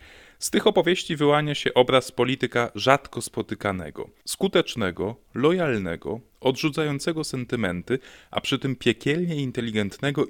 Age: 20-39